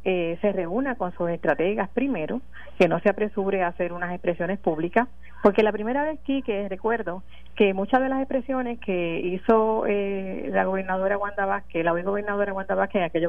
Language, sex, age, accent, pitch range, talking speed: Spanish, female, 40-59, American, 180-245 Hz, 185 wpm